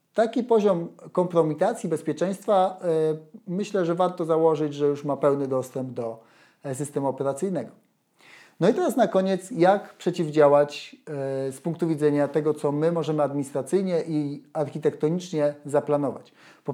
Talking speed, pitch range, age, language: 135 wpm, 145-185 Hz, 30-49, Polish